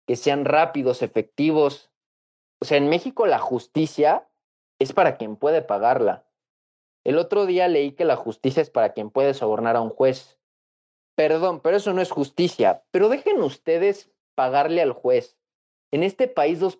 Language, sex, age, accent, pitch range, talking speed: Spanish, male, 30-49, Mexican, 120-190 Hz, 165 wpm